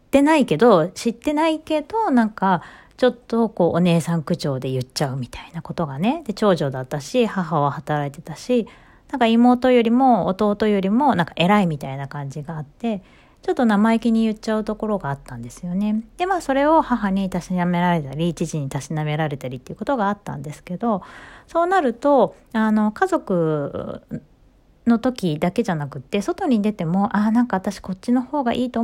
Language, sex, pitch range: Japanese, female, 165-245 Hz